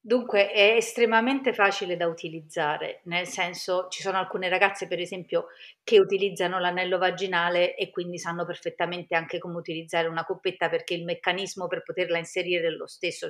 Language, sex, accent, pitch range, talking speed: Italian, female, native, 170-195 Hz, 165 wpm